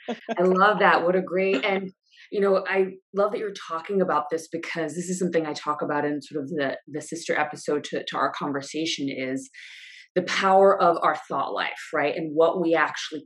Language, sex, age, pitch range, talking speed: English, female, 20-39, 155-210 Hz, 210 wpm